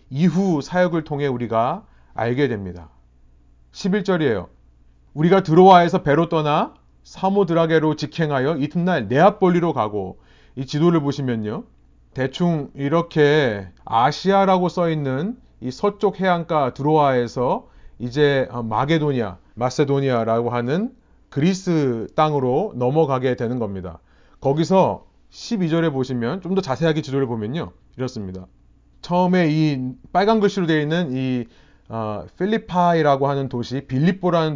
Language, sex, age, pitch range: Korean, male, 30-49, 115-180 Hz